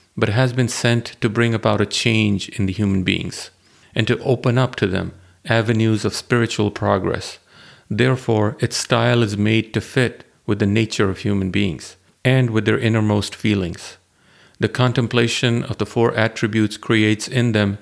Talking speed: 170 wpm